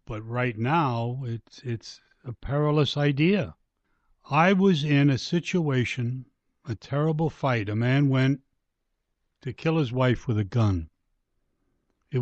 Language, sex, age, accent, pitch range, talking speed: English, male, 60-79, American, 115-145 Hz, 135 wpm